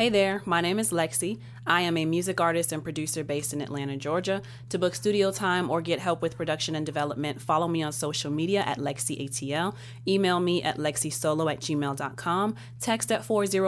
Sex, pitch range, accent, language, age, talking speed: female, 145-180 Hz, American, English, 30-49, 195 wpm